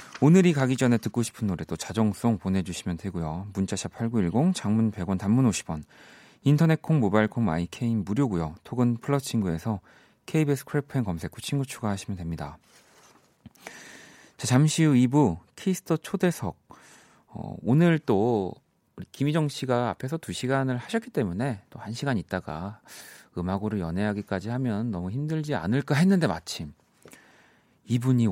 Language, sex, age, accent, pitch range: Korean, male, 30-49, native, 95-145 Hz